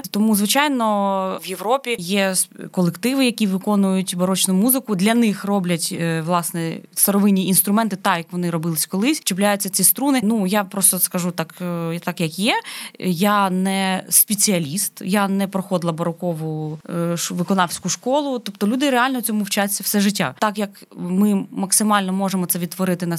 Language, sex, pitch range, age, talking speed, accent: Ukrainian, female, 180-210 Hz, 20-39, 145 wpm, native